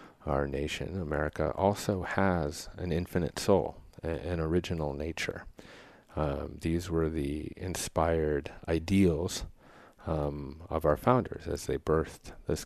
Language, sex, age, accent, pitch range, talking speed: English, male, 40-59, American, 75-90 Hz, 125 wpm